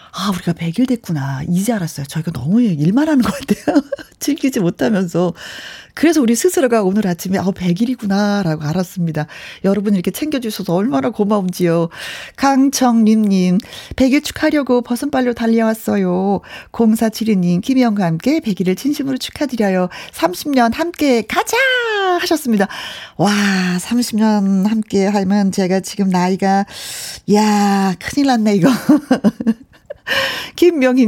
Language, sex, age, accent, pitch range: Korean, female, 40-59, native, 185-260 Hz